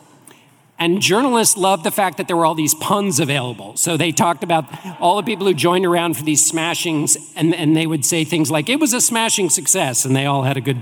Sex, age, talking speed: male, 50-69, 240 wpm